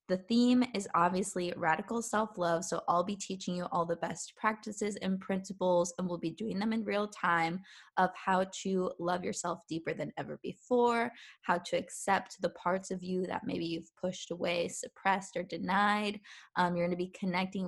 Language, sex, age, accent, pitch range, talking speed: English, female, 20-39, American, 175-210 Hz, 185 wpm